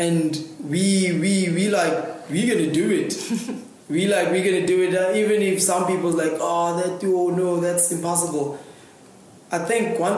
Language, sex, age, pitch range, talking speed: English, male, 20-39, 140-165 Hz, 175 wpm